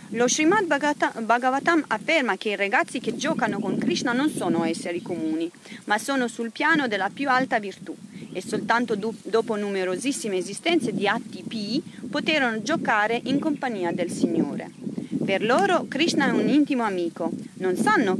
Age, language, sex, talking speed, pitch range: 40-59, Italian, female, 160 wpm, 215-275 Hz